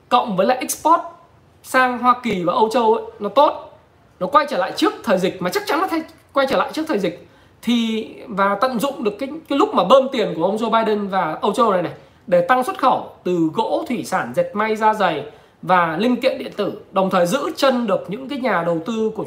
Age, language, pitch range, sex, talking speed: 20-39, Vietnamese, 180-245 Hz, male, 245 wpm